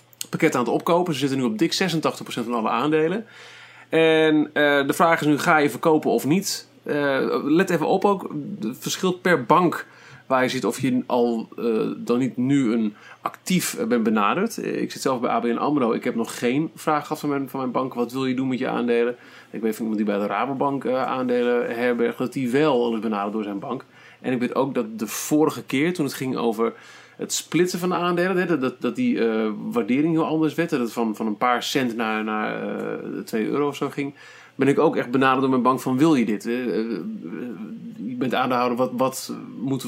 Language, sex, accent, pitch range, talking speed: Dutch, male, Dutch, 120-160 Hz, 210 wpm